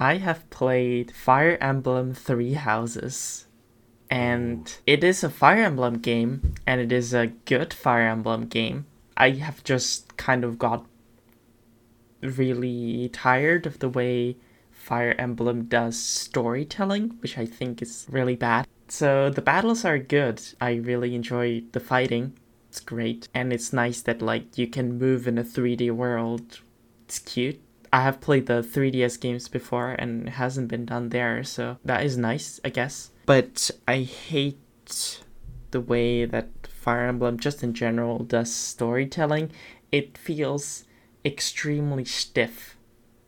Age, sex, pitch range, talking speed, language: 10-29, male, 120-130 Hz, 145 wpm, English